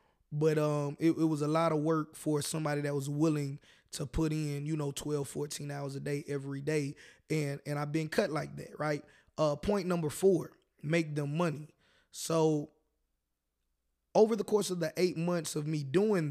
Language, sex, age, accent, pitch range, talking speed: English, male, 20-39, American, 145-170 Hz, 190 wpm